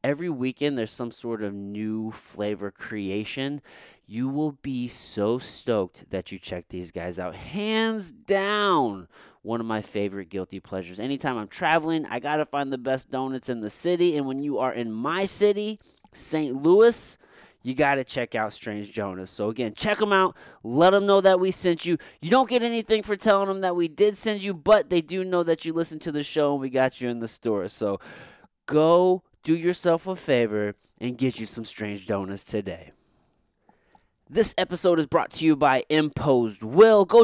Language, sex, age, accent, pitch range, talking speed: English, male, 20-39, American, 120-185 Hz, 195 wpm